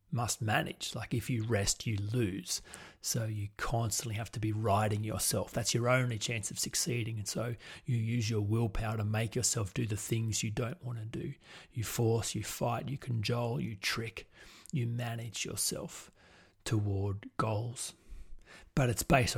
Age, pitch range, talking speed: 30-49, 105-120 Hz, 170 wpm